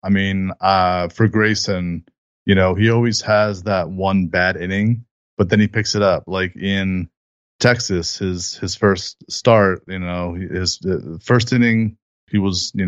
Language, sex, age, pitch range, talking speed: English, male, 30-49, 90-110 Hz, 170 wpm